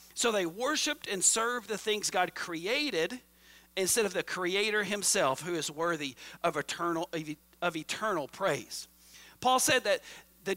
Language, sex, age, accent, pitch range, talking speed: English, male, 50-69, American, 160-230 Hz, 150 wpm